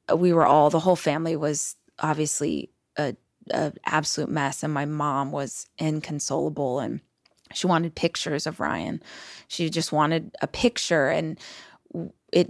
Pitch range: 160-195 Hz